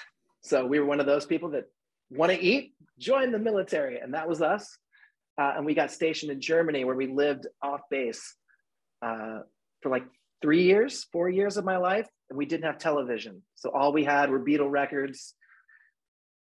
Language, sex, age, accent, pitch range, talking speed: English, male, 30-49, American, 130-160 Hz, 190 wpm